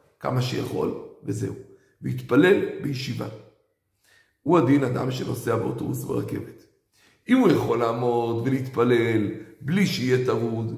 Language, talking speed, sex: Hebrew, 105 wpm, male